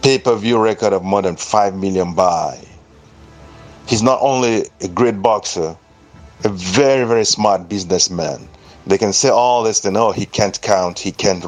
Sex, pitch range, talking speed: male, 100-145 Hz, 160 wpm